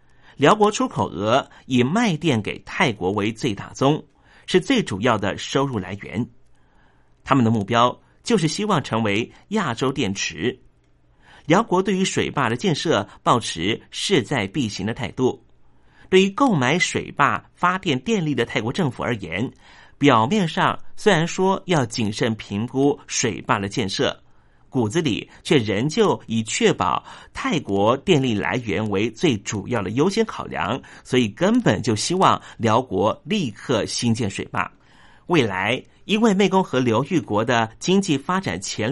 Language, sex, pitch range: Chinese, male, 110-180 Hz